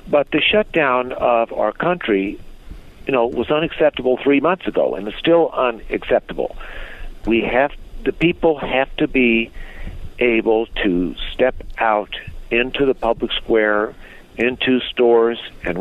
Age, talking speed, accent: 60-79, 135 wpm, American